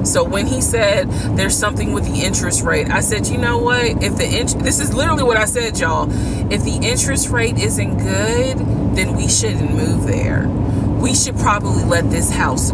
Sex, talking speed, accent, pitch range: female, 200 wpm, American, 95-110 Hz